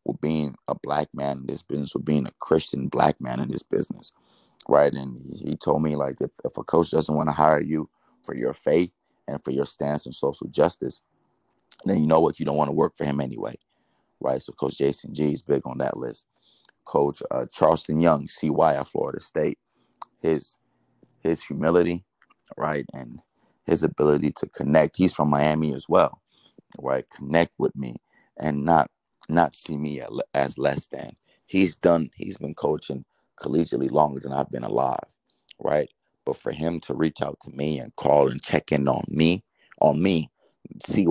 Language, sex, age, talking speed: English, male, 30-49, 185 wpm